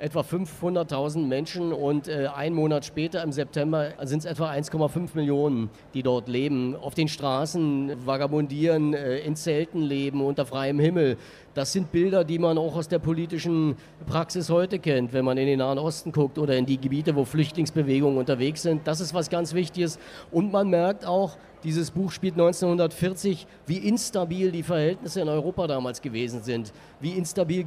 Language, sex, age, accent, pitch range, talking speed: German, male, 40-59, German, 145-180 Hz, 175 wpm